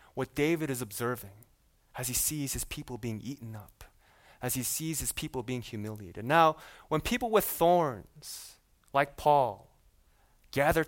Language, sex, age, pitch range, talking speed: English, male, 20-39, 110-155 Hz, 150 wpm